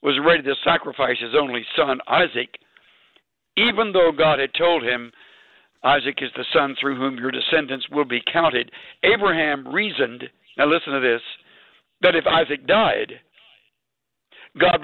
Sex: male